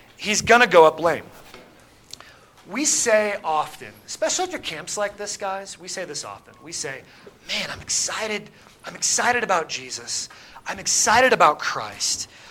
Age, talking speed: 30-49, 160 wpm